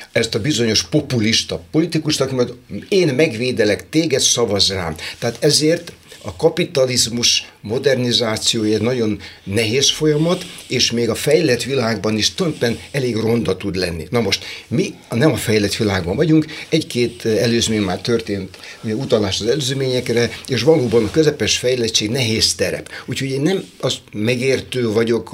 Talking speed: 145 wpm